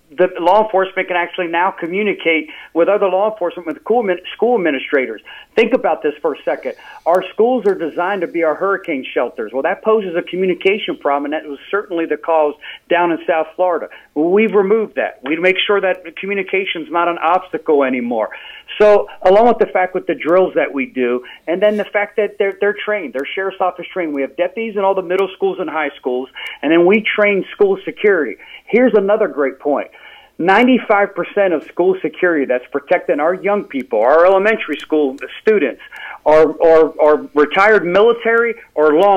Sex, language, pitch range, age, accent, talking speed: male, English, 160-205 Hz, 40-59, American, 185 wpm